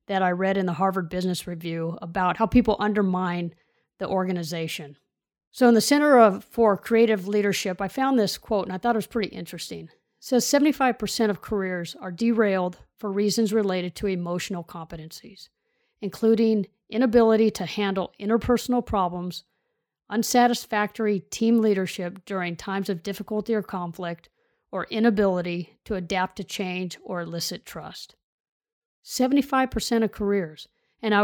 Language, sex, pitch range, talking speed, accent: English, female, 180-225 Hz, 140 wpm, American